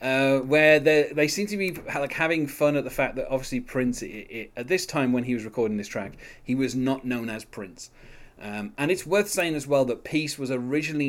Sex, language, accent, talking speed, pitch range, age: male, English, British, 220 wpm, 115-150 Hz, 30-49